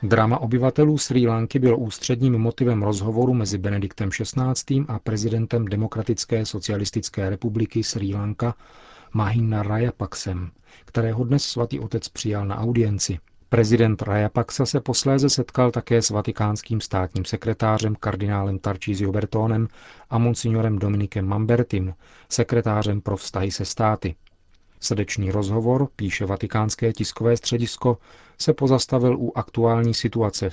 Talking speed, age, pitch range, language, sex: 120 wpm, 40-59, 100-120 Hz, Czech, male